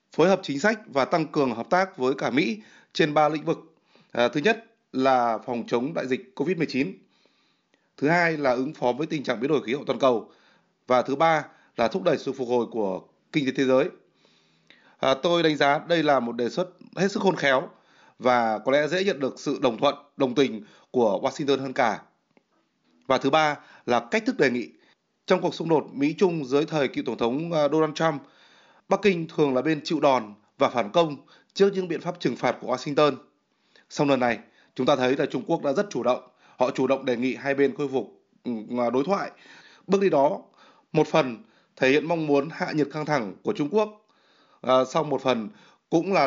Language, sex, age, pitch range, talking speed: Vietnamese, male, 20-39, 130-170 Hz, 215 wpm